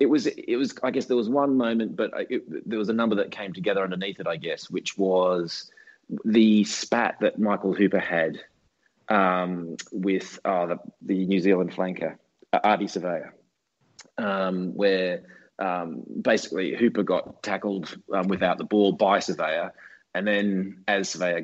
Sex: male